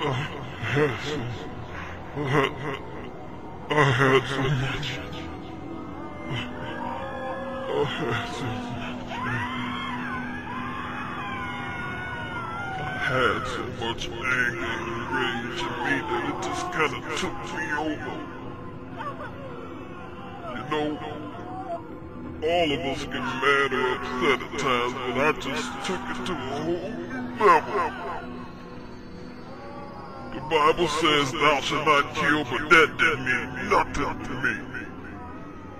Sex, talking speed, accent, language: female, 100 wpm, American, English